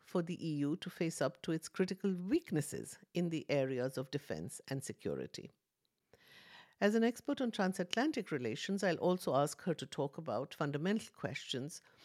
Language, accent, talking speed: English, Indian, 160 wpm